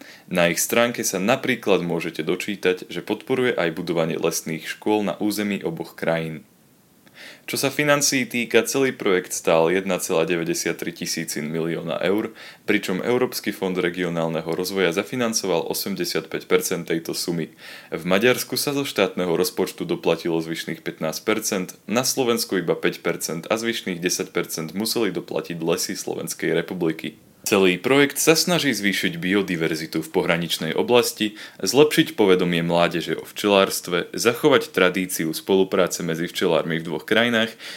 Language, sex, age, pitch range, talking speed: Slovak, male, 20-39, 85-115 Hz, 125 wpm